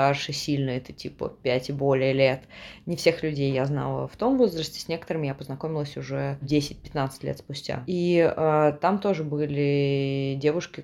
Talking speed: 160 wpm